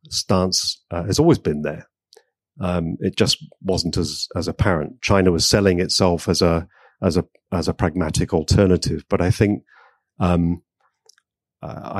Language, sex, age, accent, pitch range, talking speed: English, male, 40-59, British, 85-105 Hz, 150 wpm